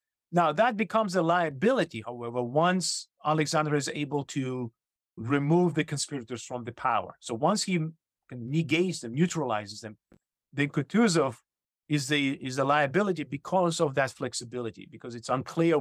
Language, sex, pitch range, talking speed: English, male, 120-165 Hz, 140 wpm